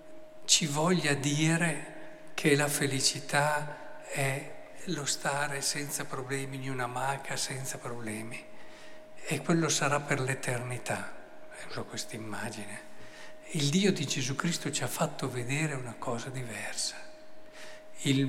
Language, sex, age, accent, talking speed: Italian, male, 50-69, native, 120 wpm